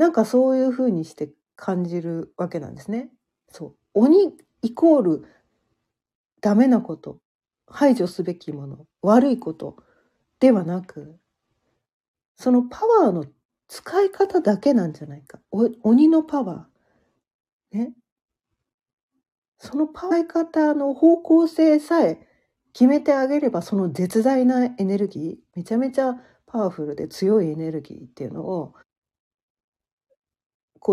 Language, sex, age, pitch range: Japanese, female, 40-59, 180-270 Hz